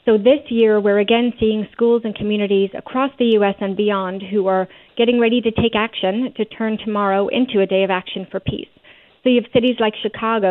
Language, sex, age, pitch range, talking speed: English, female, 40-59, 200-230 Hz, 210 wpm